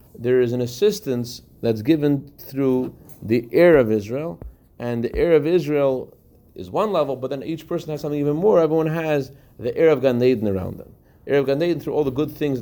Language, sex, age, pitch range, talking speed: English, male, 30-49, 110-140 Hz, 220 wpm